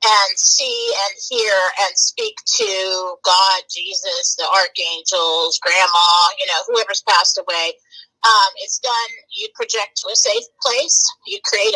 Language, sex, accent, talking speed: English, female, American, 145 wpm